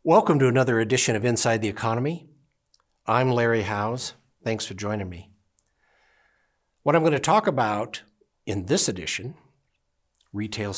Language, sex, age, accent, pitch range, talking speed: English, male, 60-79, American, 105-130 Hz, 140 wpm